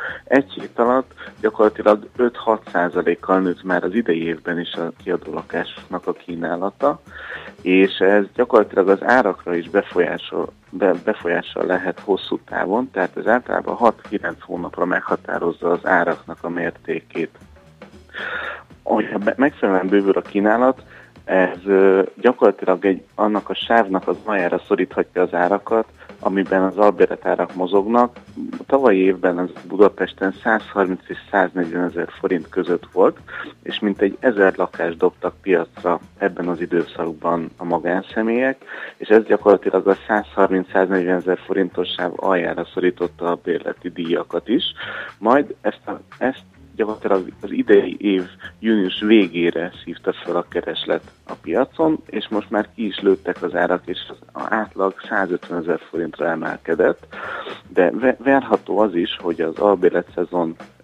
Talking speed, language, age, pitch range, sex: 130 wpm, Hungarian, 30-49, 90-110 Hz, male